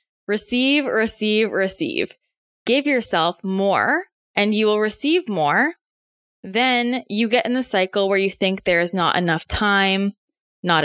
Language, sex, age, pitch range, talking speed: English, female, 20-39, 195-265 Hz, 145 wpm